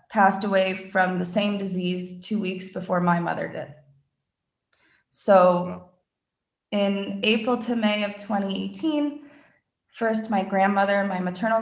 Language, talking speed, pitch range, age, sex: English, 125 wpm, 180-215 Hz, 20-39, female